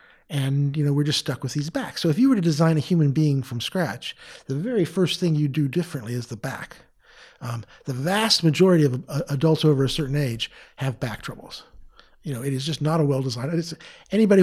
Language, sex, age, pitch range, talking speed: Dutch, male, 50-69, 130-165 Hz, 220 wpm